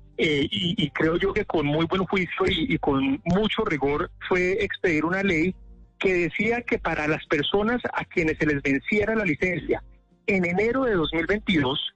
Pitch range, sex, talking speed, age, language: 155-200 Hz, male, 180 wpm, 40-59, Spanish